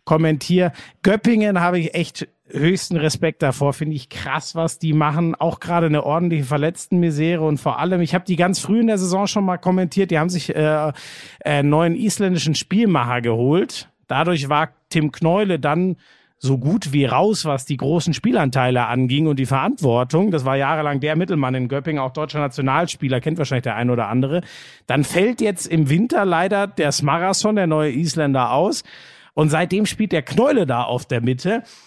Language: German